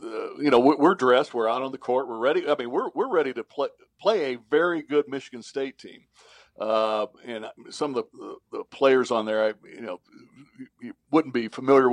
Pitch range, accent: 115-145 Hz, American